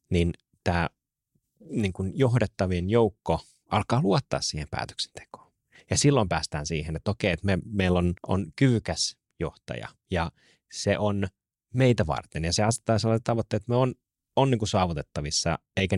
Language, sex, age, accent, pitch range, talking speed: Finnish, male, 30-49, native, 85-105 Hz, 150 wpm